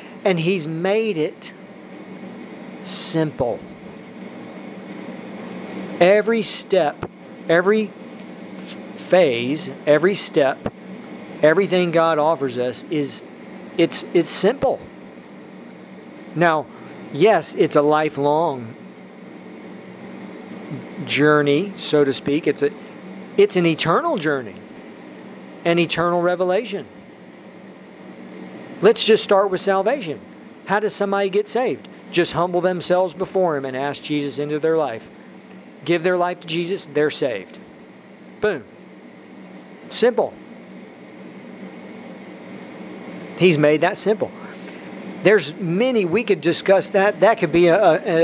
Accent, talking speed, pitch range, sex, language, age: American, 100 wpm, 145-195 Hz, male, English, 40-59